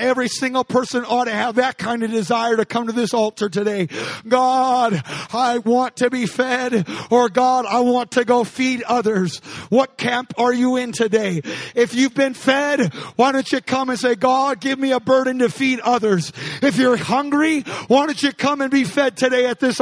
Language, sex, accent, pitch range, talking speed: English, male, American, 235-265 Hz, 205 wpm